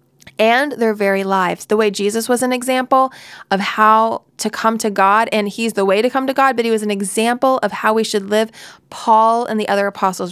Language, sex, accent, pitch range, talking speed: English, female, American, 200-265 Hz, 225 wpm